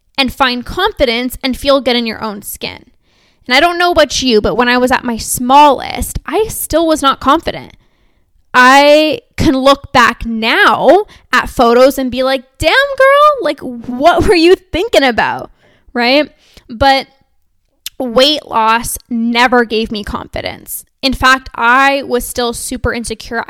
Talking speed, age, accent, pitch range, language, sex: 155 wpm, 10-29, American, 235-280 Hz, English, female